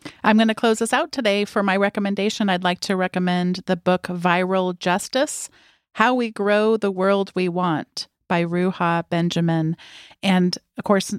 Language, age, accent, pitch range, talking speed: English, 40-59, American, 170-200 Hz, 165 wpm